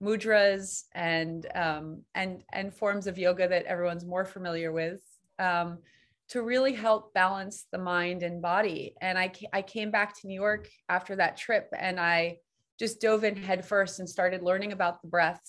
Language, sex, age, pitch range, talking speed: English, female, 30-49, 180-220 Hz, 180 wpm